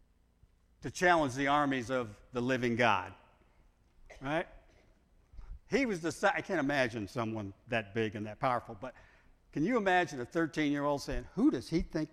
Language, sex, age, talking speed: English, male, 60-79, 170 wpm